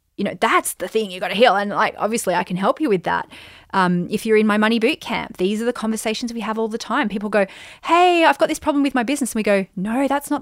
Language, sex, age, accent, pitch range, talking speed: English, female, 30-49, Australian, 185-255 Hz, 290 wpm